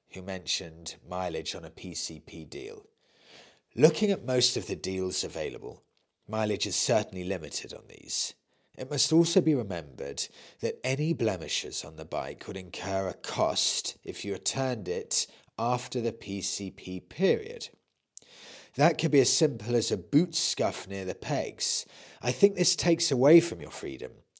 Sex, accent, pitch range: male, British, 100-150 Hz